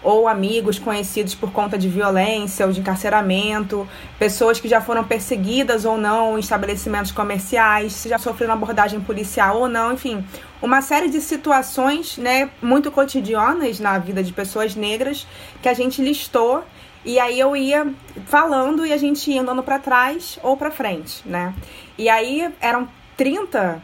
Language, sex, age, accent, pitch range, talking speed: Portuguese, female, 20-39, Brazilian, 215-270 Hz, 160 wpm